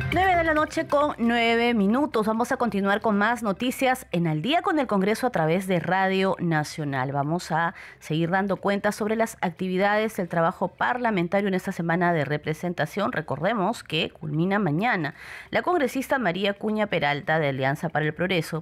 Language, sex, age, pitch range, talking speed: Spanish, female, 30-49, 160-210 Hz, 175 wpm